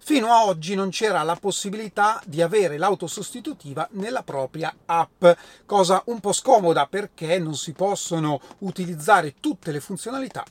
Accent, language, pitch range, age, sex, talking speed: native, Italian, 165-225 Hz, 30-49, male, 150 wpm